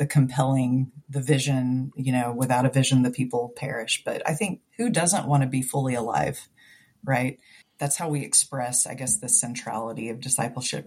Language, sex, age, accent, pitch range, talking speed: English, female, 30-49, American, 125-145 Hz, 180 wpm